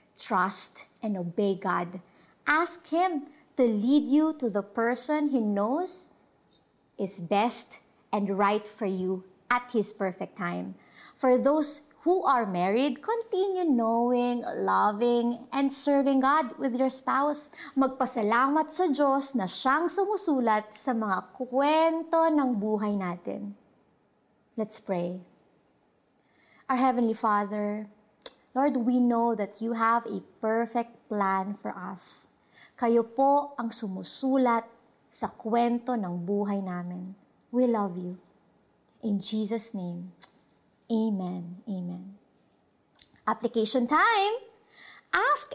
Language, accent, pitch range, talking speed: Filipino, native, 205-275 Hz, 115 wpm